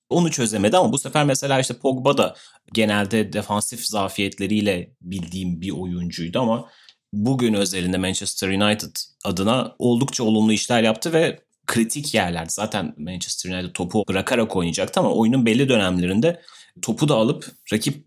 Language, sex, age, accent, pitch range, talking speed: Turkish, male, 30-49, native, 100-120 Hz, 140 wpm